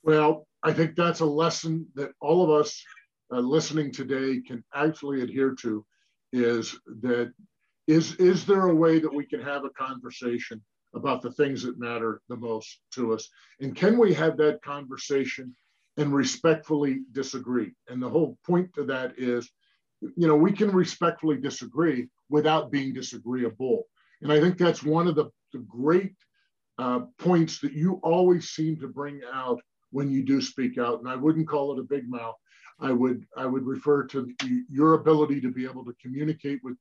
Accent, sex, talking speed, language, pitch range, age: American, male, 180 wpm, English, 125-155 Hz, 50-69